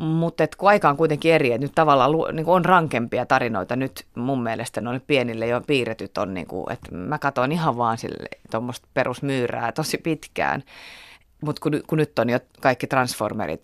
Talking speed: 170 wpm